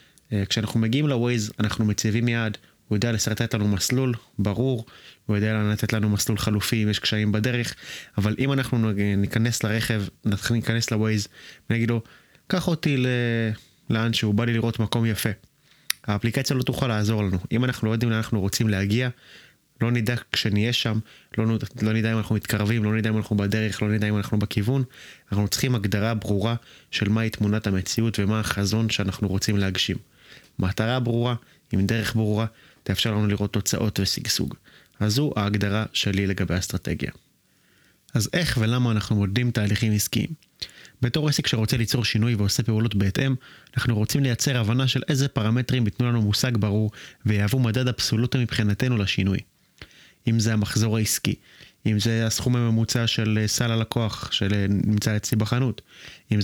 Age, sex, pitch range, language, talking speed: 20-39, male, 105-120 Hz, Hebrew, 155 wpm